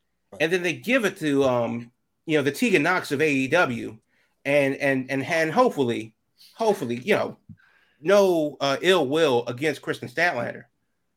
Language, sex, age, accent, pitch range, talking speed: English, male, 30-49, American, 135-180 Hz, 155 wpm